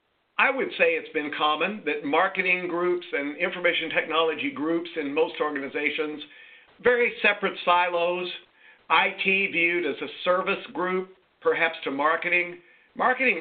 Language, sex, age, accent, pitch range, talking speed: English, male, 50-69, American, 150-195 Hz, 130 wpm